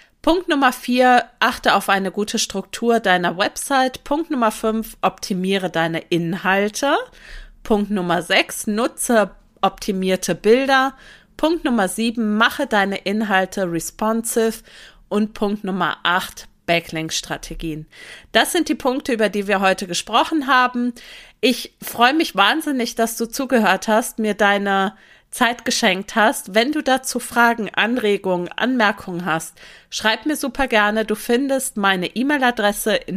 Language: German